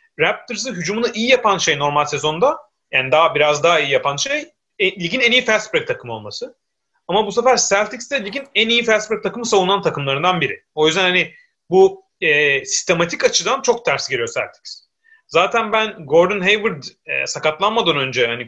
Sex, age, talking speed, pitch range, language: male, 30-49, 180 wpm, 155-240 Hz, Turkish